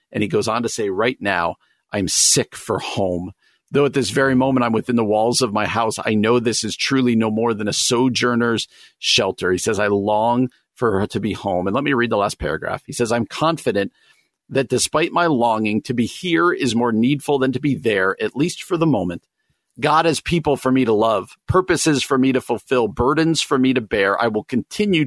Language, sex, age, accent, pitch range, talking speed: English, male, 50-69, American, 115-150 Hz, 225 wpm